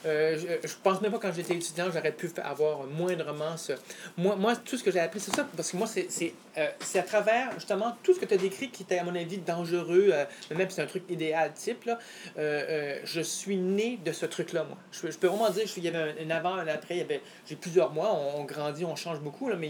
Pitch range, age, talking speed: 155-195 Hz, 30-49, 290 wpm